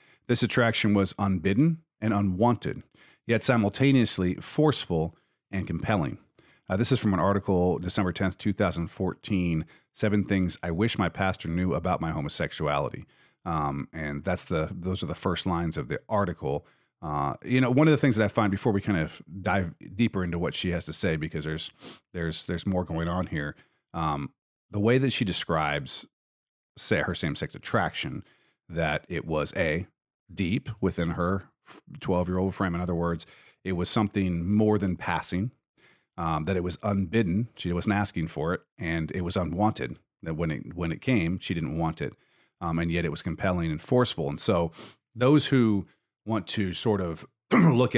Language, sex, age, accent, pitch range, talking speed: English, male, 40-59, American, 85-110 Hz, 175 wpm